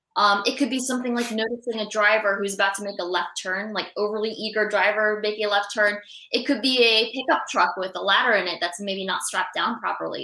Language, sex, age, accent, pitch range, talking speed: English, female, 20-39, American, 185-225 Hz, 240 wpm